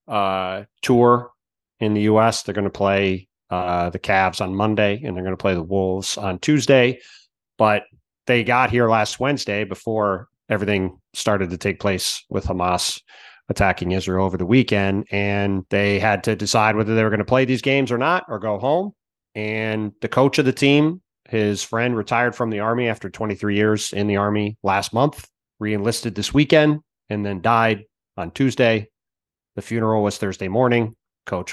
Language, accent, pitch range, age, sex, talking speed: English, American, 95-115 Hz, 30-49, male, 180 wpm